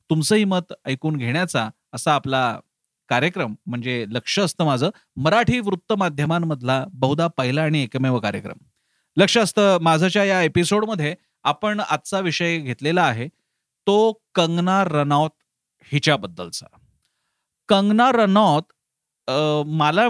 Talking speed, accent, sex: 105 wpm, native, male